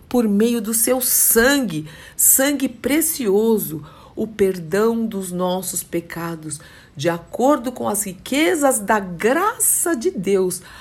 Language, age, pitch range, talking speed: Portuguese, 50-69, 180-230 Hz, 115 wpm